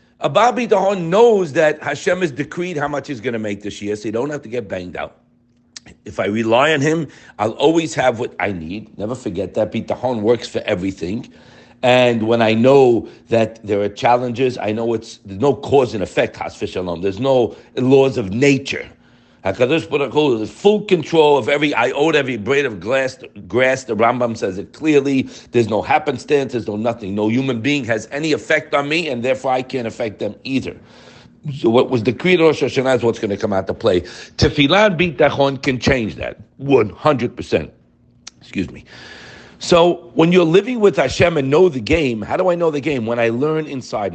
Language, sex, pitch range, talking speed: English, male, 115-165 Hz, 190 wpm